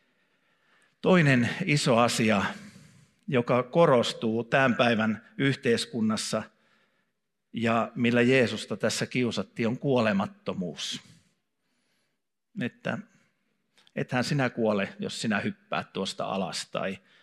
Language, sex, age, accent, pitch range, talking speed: Finnish, male, 50-69, native, 115-185 Hz, 85 wpm